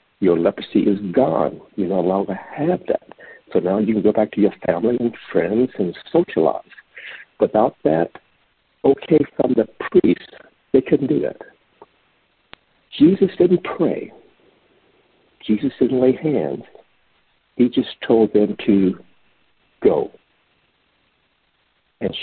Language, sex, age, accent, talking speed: English, male, 60-79, American, 125 wpm